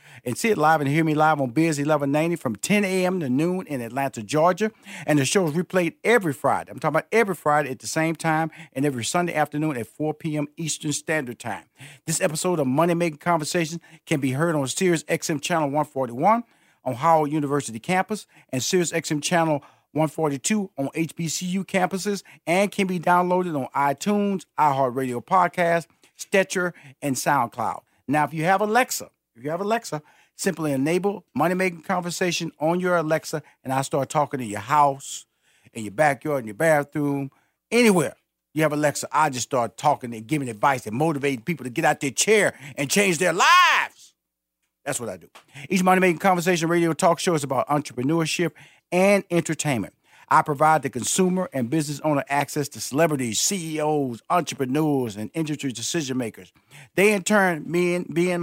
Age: 40-59